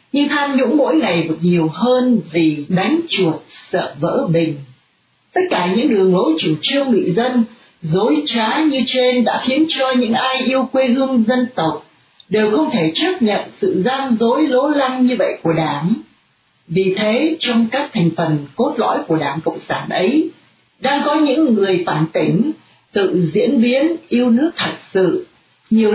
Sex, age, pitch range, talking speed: female, 40-59, 170-260 Hz, 180 wpm